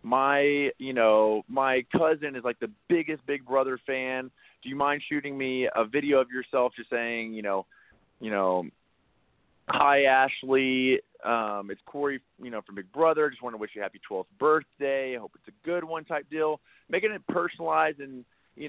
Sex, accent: male, American